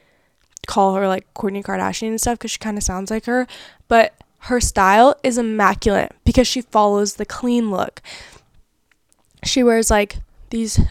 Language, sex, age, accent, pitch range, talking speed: English, female, 10-29, American, 205-255 Hz, 160 wpm